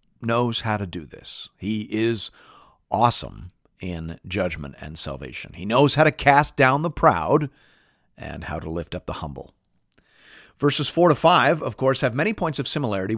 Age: 50-69